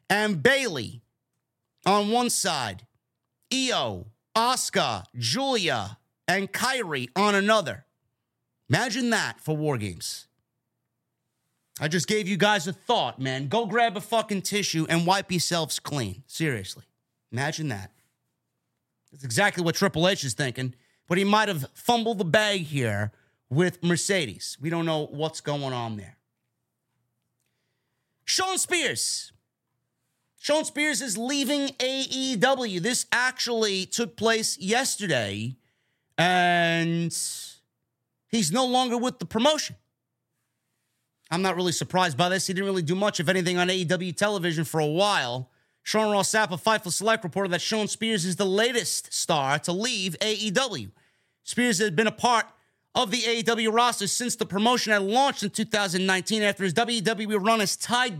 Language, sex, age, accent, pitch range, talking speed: English, male, 30-49, American, 145-225 Hz, 140 wpm